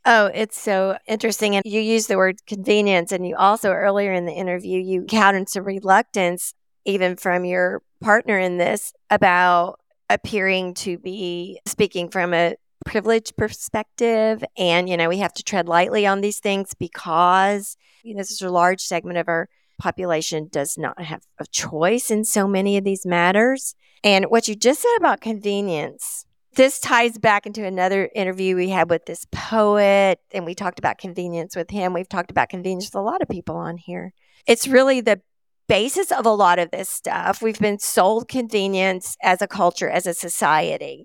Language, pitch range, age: English, 180-220 Hz, 50-69